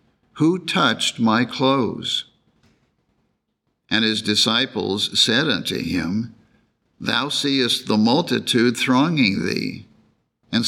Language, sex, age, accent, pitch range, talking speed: English, male, 60-79, American, 115-135 Hz, 95 wpm